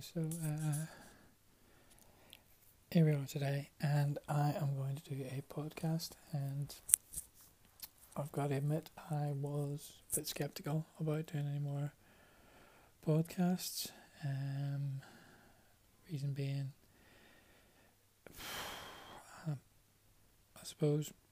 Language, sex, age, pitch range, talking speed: English, male, 20-39, 115-145 Hz, 95 wpm